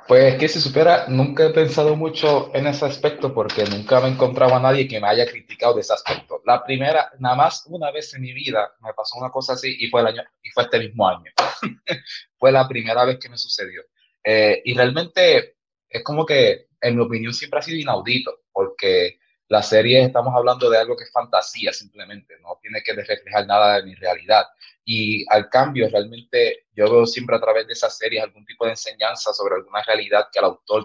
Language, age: Spanish, 20-39